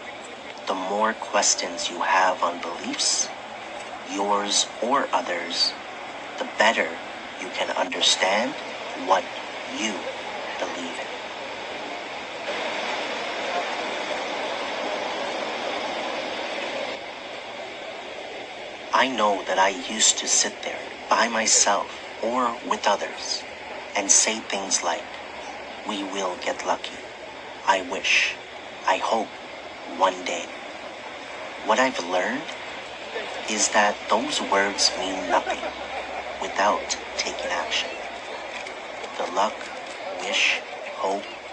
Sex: male